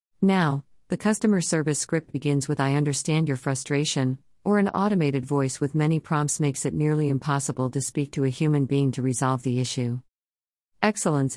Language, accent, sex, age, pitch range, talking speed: English, American, female, 50-69, 130-165 Hz, 175 wpm